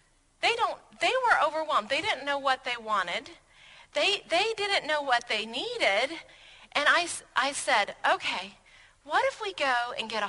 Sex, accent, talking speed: female, American, 175 wpm